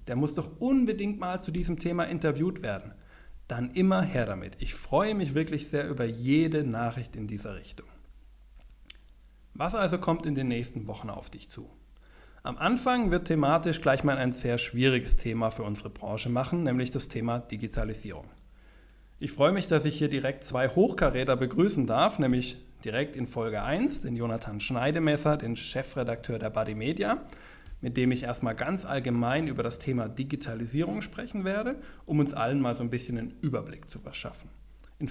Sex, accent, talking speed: male, German, 175 wpm